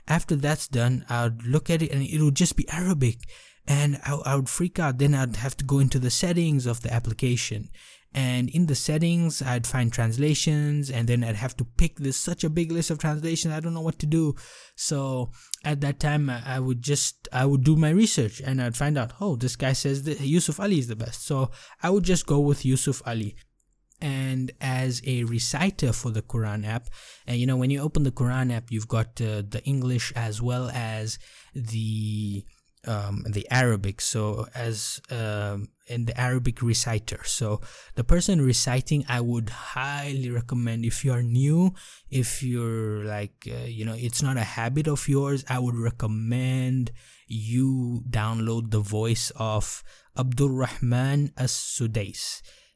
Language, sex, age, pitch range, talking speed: English, male, 20-39, 115-145 Hz, 185 wpm